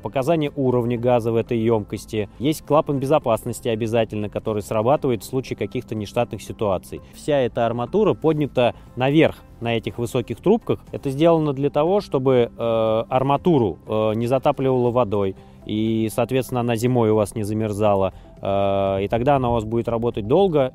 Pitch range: 110-140 Hz